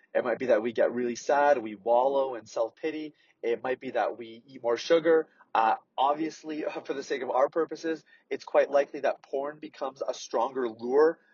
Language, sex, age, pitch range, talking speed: English, male, 30-49, 125-165 Hz, 195 wpm